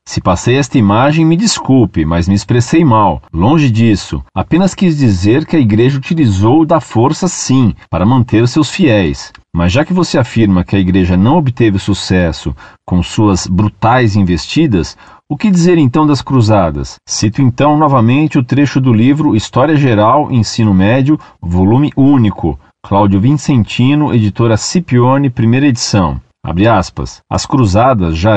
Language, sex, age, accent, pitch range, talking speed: Portuguese, male, 40-59, Brazilian, 100-140 Hz, 150 wpm